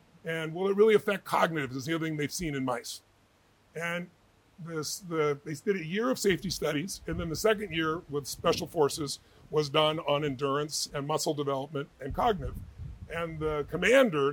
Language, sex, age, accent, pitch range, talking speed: English, female, 40-59, American, 155-210 Hz, 185 wpm